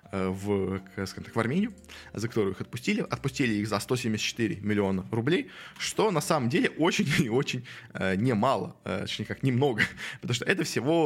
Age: 20-39